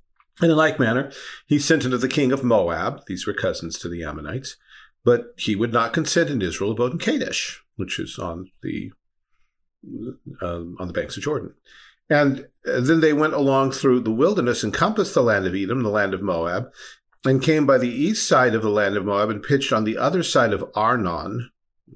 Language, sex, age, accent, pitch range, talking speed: English, male, 50-69, American, 120-155 Hz, 200 wpm